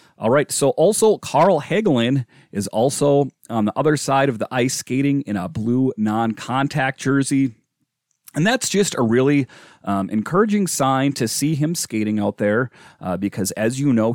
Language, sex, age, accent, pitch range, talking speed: English, male, 30-49, American, 115-160 Hz, 175 wpm